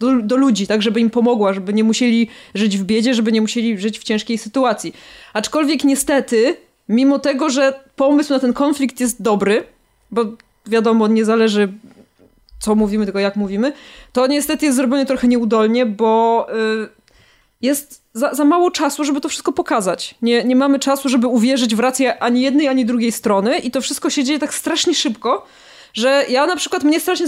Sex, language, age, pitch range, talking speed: female, Polish, 20-39, 225-275 Hz, 185 wpm